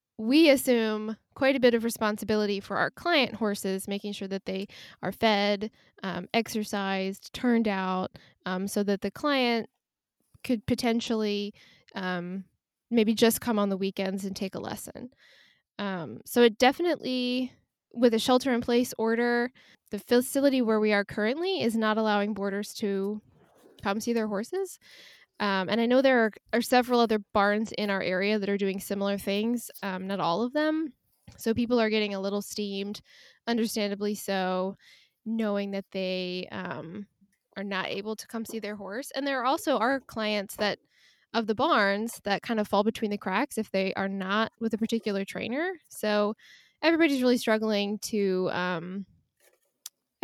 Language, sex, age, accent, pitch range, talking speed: English, female, 10-29, American, 195-235 Hz, 165 wpm